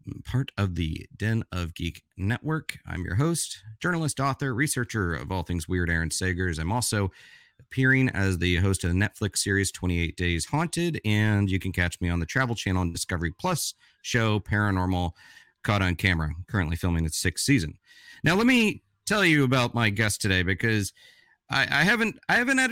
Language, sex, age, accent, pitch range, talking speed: English, male, 40-59, American, 95-155 Hz, 190 wpm